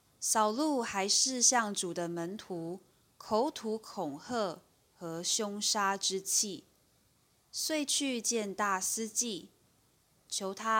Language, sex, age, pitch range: Chinese, female, 20-39, 175-235 Hz